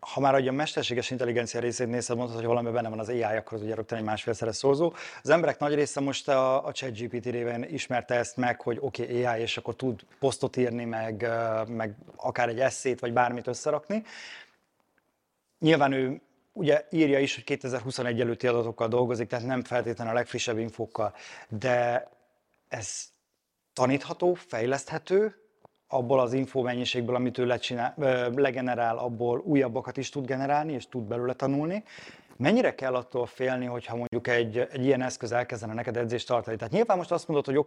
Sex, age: male, 30-49